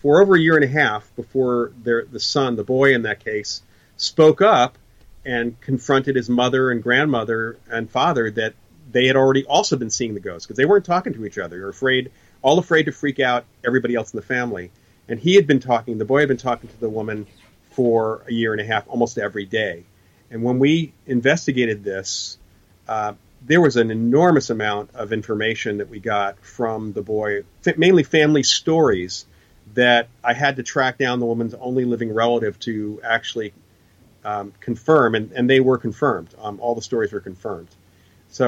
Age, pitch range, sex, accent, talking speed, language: 40-59, 105-130 Hz, male, American, 195 wpm, English